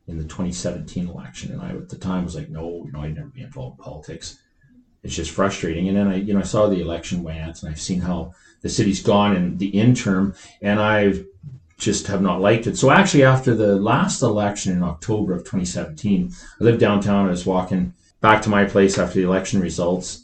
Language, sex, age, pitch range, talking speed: English, male, 40-59, 85-105 Hz, 220 wpm